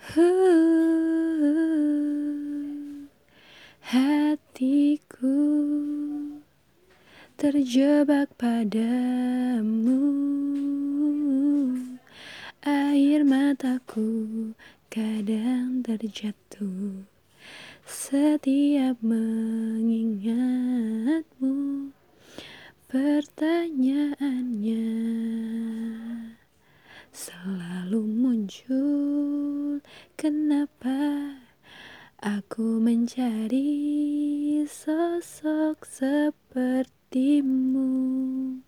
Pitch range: 230-290 Hz